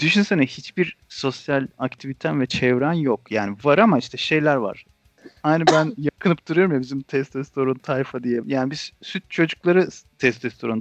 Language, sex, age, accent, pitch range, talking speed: Turkish, male, 40-59, native, 115-155 Hz, 150 wpm